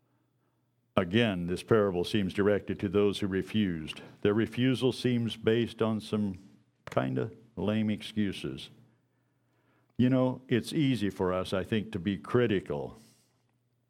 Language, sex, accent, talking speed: English, male, American, 130 wpm